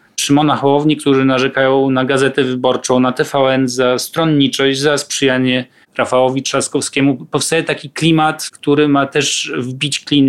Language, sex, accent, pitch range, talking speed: Polish, male, native, 130-155 Hz, 135 wpm